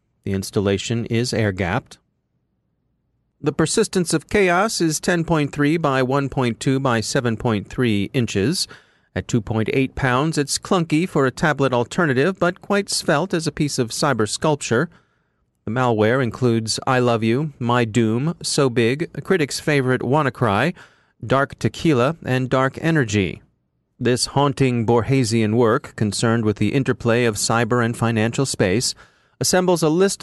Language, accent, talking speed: English, American, 135 wpm